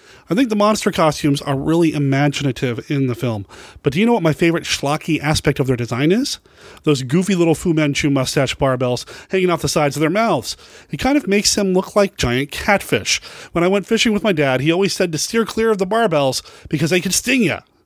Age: 30-49